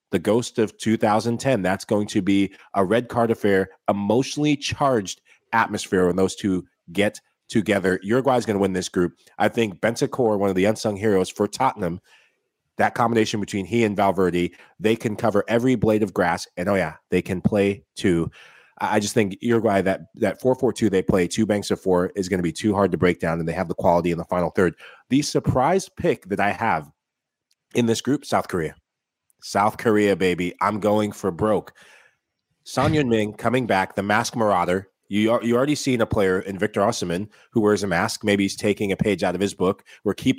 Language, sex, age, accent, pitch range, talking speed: English, male, 30-49, American, 95-115 Hz, 205 wpm